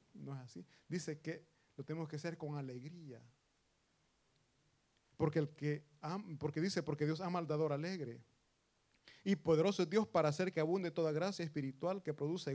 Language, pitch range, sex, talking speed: Italian, 140-185 Hz, male, 170 wpm